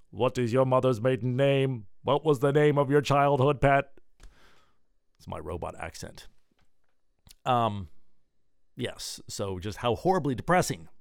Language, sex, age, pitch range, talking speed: English, male, 40-59, 100-140 Hz, 135 wpm